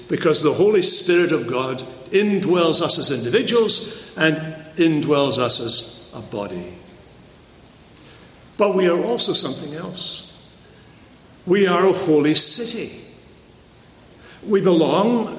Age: 60-79